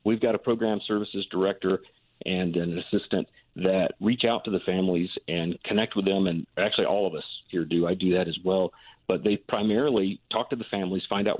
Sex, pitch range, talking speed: male, 90-110 Hz, 210 wpm